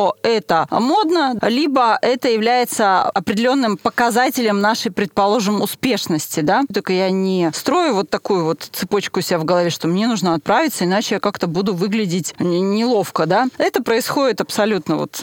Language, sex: Russian, female